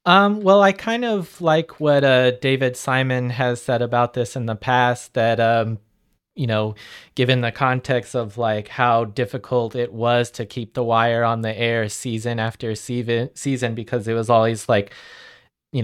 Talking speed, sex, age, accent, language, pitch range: 180 wpm, male, 20-39, American, English, 115-130 Hz